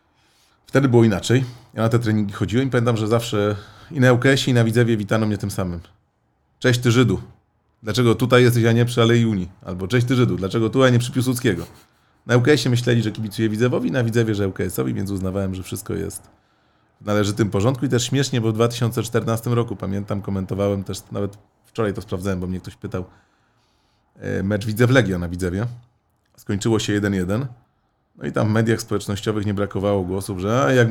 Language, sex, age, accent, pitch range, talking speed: Polish, male, 30-49, native, 100-120 Hz, 190 wpm